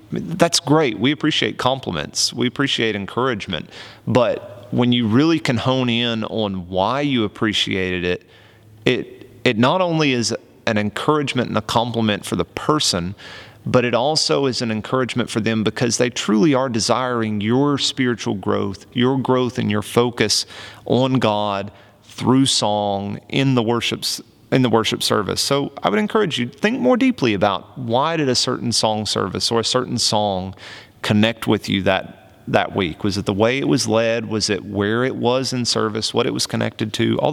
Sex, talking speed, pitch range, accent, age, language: male, 180 wpm, 110-130 Hz, American, 30-49, English